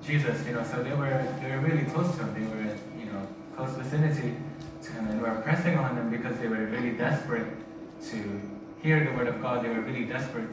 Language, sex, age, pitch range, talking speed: English, male, 20-39, 110-145 Hz, 230 wpm